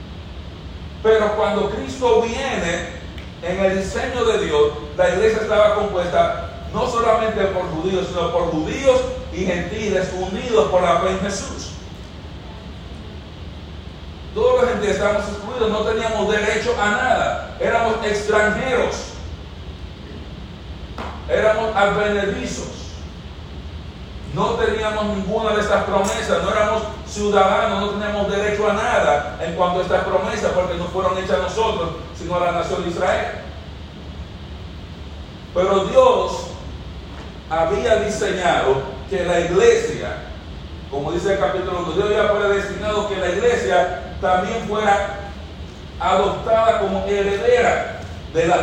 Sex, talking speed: male, 120 wpm